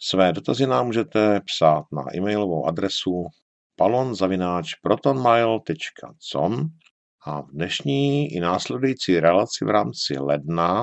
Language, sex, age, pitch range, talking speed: Czech, male, 50-69, 85-115 Hz, 100 wpm